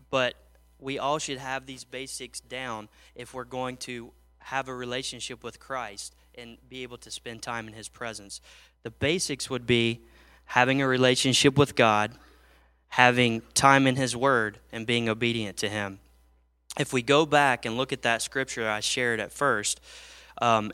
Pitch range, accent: 115-135 Hz, American